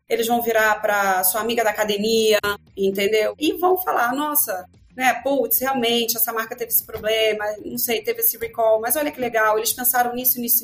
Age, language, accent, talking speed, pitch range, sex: 30-49, Portuguese, Brazilian, 190 wpm, 190-240 Hz, female